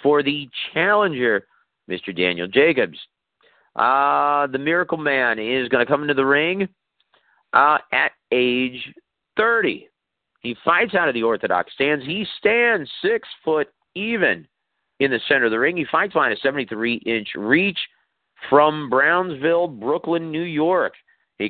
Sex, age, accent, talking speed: male, 40-59, American, 140 wpm